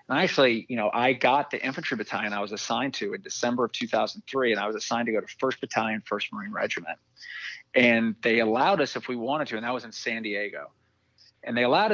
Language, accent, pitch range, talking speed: English, American, 105-120 Hz, 225 wpm